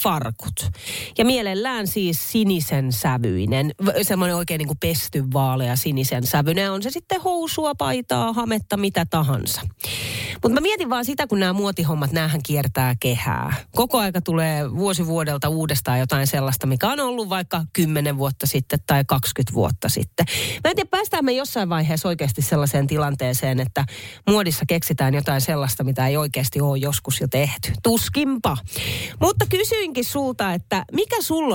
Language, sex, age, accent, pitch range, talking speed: Finnish, female, 30-49, native, 140-205 Hz, 150 wpm